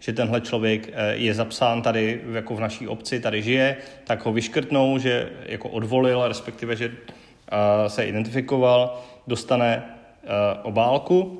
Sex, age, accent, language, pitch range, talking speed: male, 30-49, native, Czech, 115-130 Hz, 125 wpm